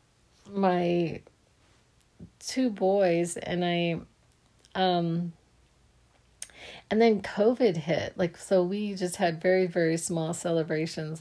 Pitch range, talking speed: 165-185 Hz, 100 wpm